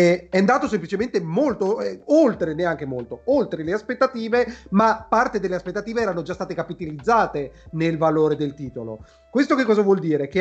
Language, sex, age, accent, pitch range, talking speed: Italian, male, 30-49, native, 165-210 Hz, 165 wpm